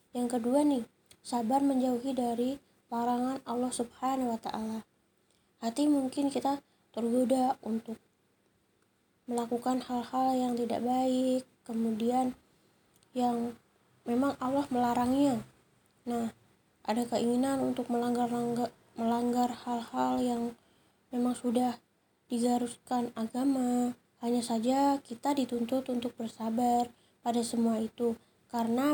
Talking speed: 100 wpm